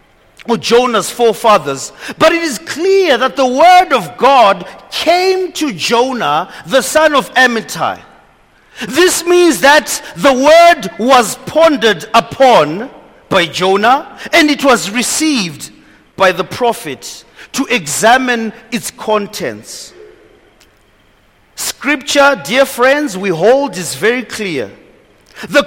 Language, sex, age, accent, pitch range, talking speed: English, male, 40-59, South African, 205-305 Hz, 110 wpm